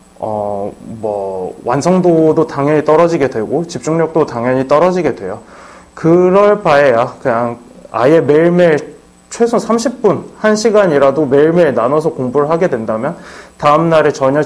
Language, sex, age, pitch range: Korean, male, 20-39, 135-180 Hz